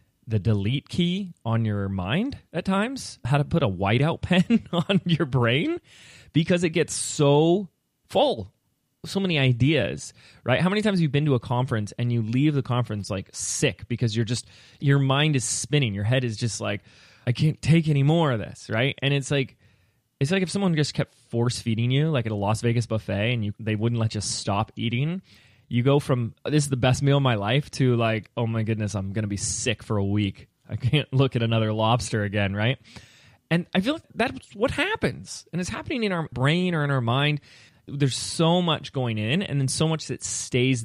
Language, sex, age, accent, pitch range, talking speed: English, male, 20-39, American, 110-145 Hz, 215 wpm